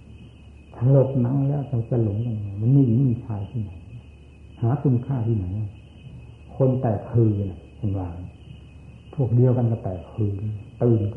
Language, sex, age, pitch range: Thai, male, 60-79, 100-130 Hz